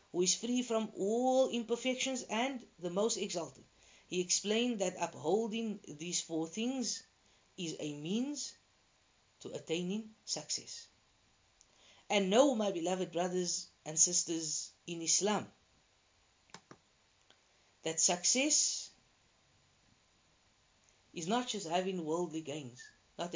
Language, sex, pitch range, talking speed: English, female, 150-210 Hz, 105 wpm